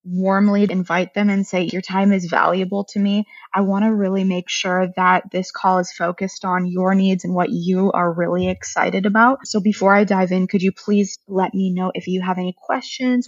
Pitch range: 180-205 Hz